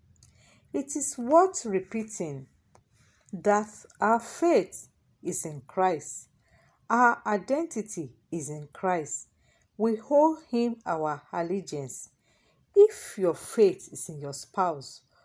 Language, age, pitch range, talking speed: English, 40-59, 160-225 Hz, 105 wpm